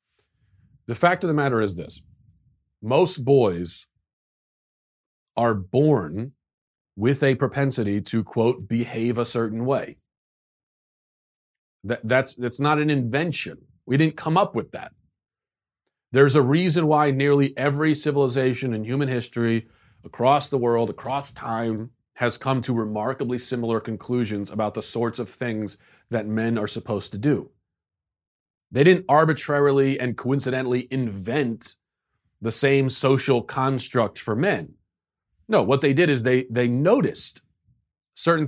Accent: American